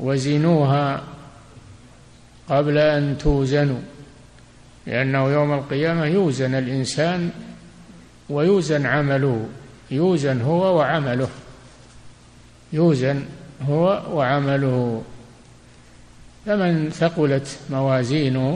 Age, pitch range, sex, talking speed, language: 60-79, 130-160 Hz, male, 65 wpm, Arabic